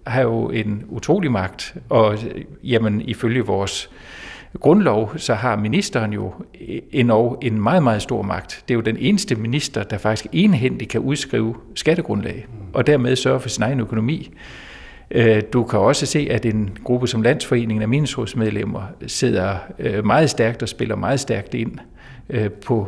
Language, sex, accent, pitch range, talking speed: Danish, male, native, 110-130 Hz, 155 wpm